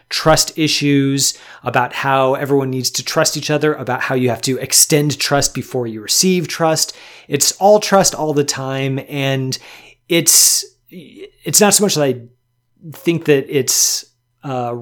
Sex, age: male, 30-49